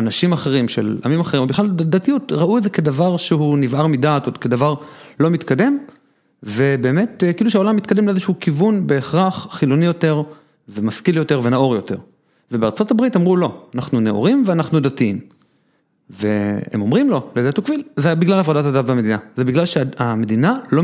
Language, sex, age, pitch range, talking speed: Hebrew, male, 40-59, 120-170 Hz, 155 wpm